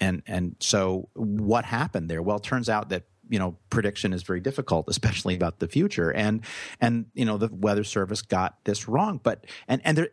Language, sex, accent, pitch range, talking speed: English, male, American, 100-125 Hz, 205 wpm